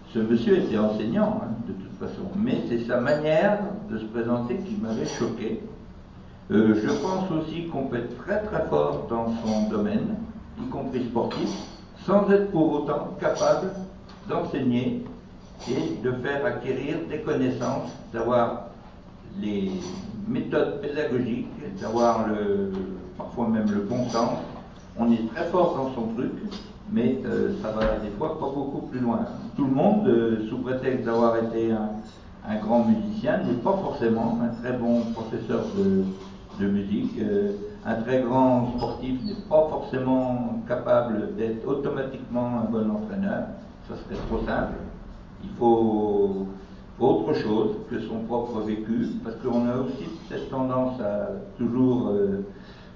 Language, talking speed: French, 150 wpm